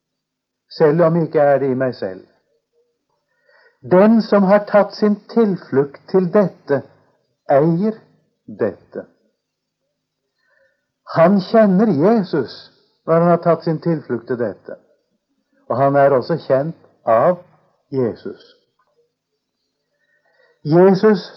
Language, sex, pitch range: English, male, 145-185 Hz